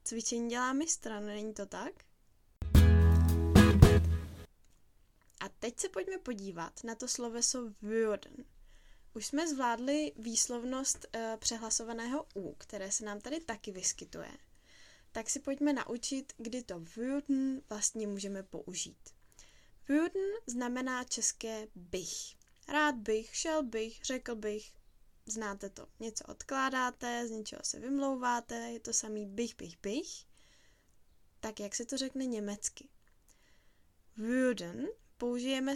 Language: Czech